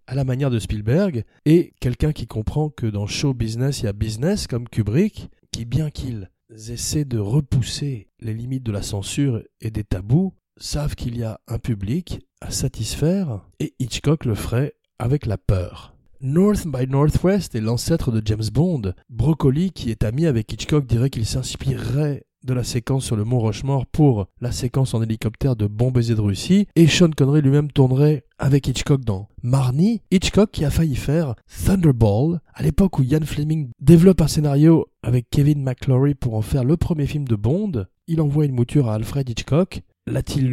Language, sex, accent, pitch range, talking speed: French, male, French, 115-150 Hz, 180 wpm